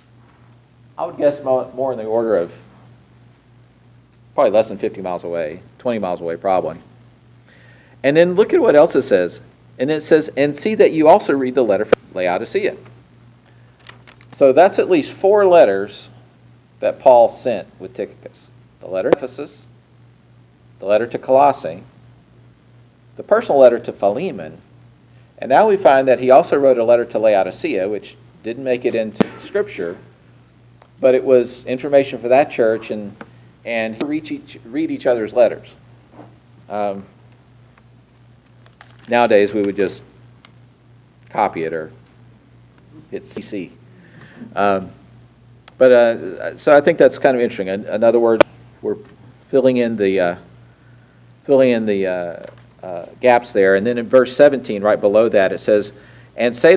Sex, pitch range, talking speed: male, 100-125 Hz, 150 wpm